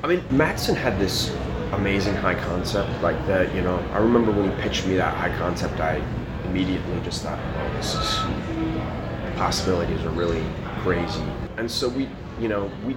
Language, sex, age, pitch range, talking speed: English, male, 30-49, 90-115 Hz, 180 wpm